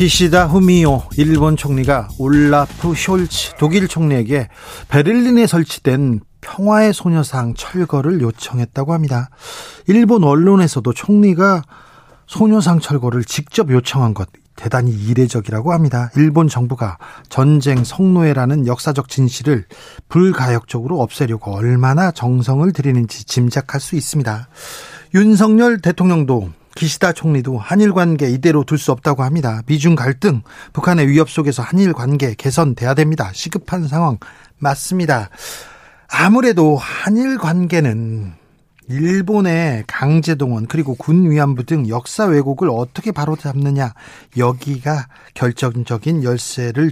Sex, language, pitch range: male, Korean, 130-180 Hz